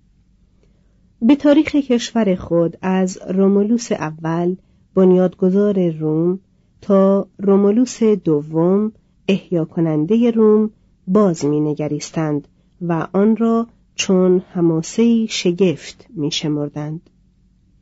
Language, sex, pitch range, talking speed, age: Persian, female, 165-210 Hz, 80 wpm, 40-59